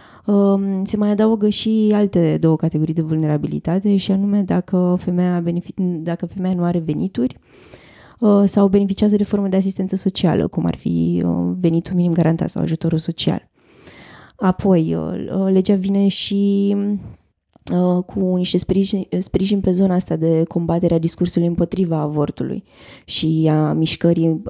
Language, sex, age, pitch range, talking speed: Romanian, female, 20-39, 155-190 Hz, 125 wpm